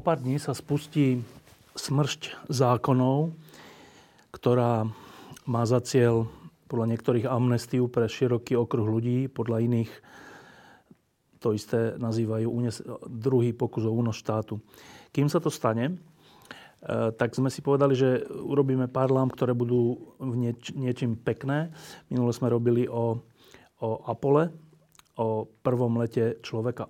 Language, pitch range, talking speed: Slovak, 115-135 Hz, 125 wpm